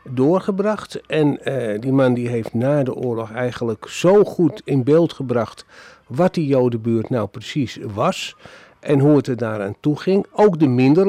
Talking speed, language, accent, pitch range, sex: 175 wpm, Dutch, Dutch, 130-175 Hz, male